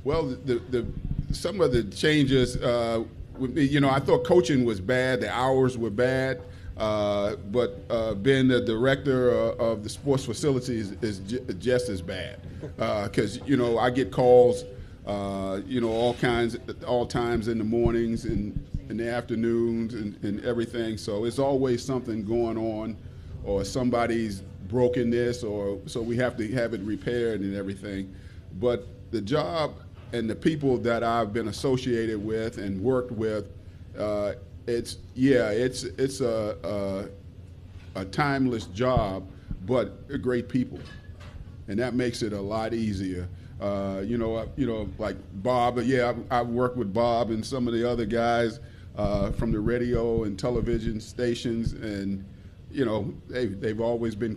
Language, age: English, 40-59